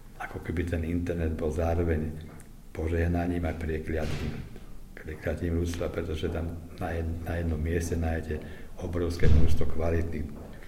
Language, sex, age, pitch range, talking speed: Slovak, male, 60-79, 80-90 Hz, 110 wpm